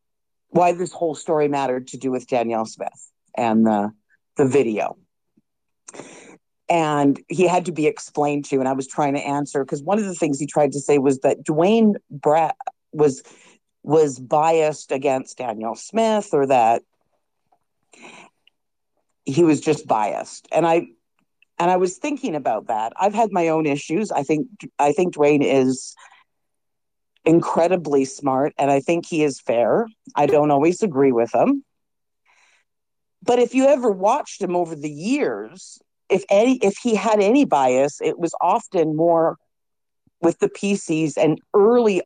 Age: 50-69